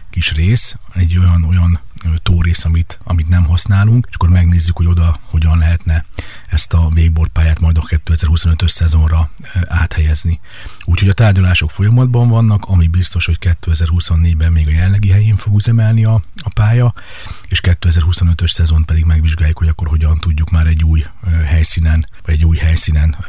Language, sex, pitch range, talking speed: Hungarian, male, 85-95 Hz, 150 wpm